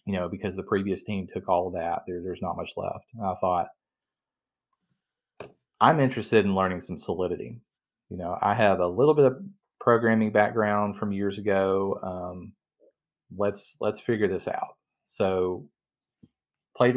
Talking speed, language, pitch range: 160 wpm, English, 90-105 Hz